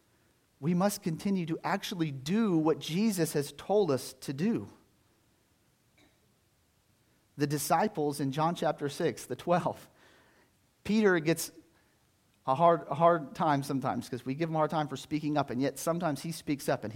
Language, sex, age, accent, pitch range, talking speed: English, male, 40-59, American, 115-165 Hz, 165 wpm